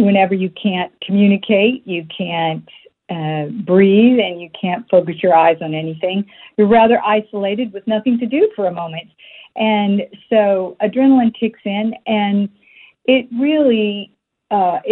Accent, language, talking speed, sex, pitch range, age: American, English, 140 wpm, female, 175-220 Hz, 50-69